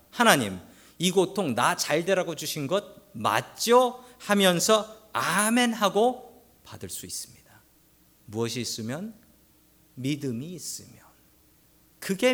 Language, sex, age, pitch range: Korean, male, 40-59, 125-205 Hz